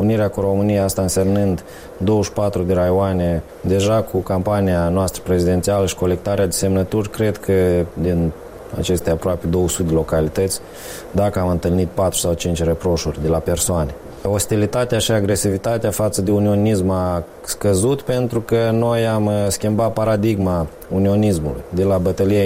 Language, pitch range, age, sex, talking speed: Romanian, 95-115 Hz, 20-39, male, 140 wpm